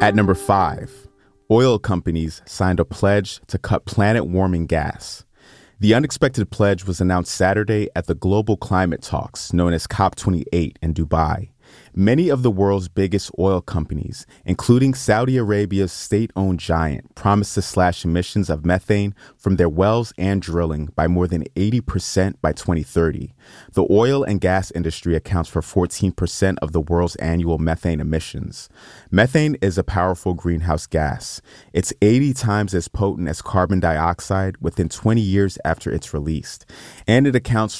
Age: 30-49